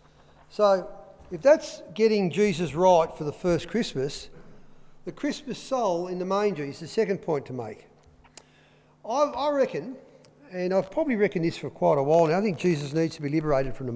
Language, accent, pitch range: English, Australian, 150-210 Hz